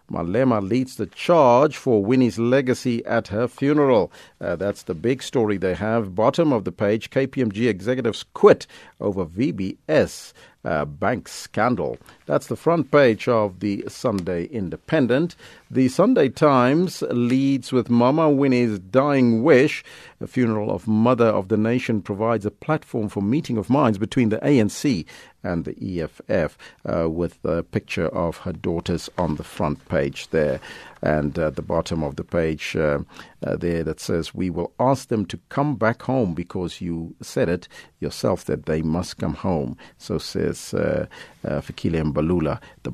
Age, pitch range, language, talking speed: 50-69, 100-135 Hz, English, 160 wpm